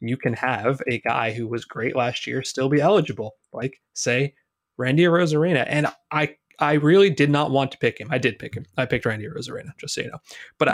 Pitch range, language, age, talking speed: 120-145 Hz, English, 20-39, 225 wpm